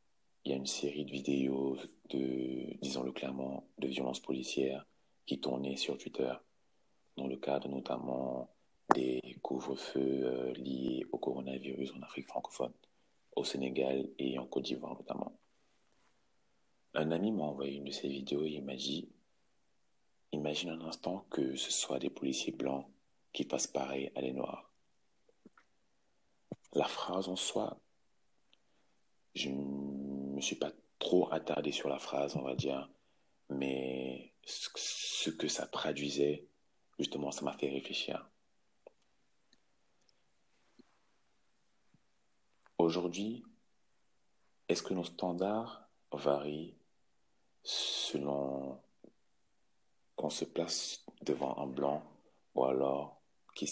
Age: 40-59